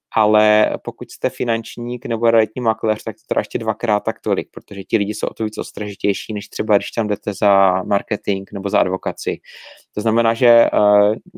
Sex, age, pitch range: male, 30-49, 105-115 Hz